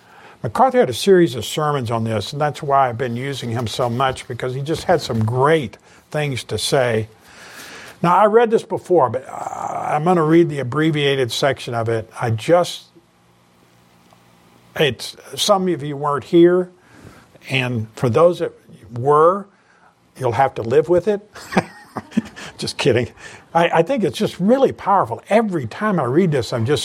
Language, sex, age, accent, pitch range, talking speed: English, male, 50-69, American, 125-185 Hz, 170 wpm